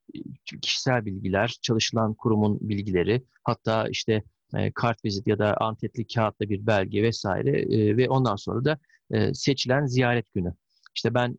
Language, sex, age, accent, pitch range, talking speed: Turkish, male, 50-69, native, 105-135 Hz, 140 wpm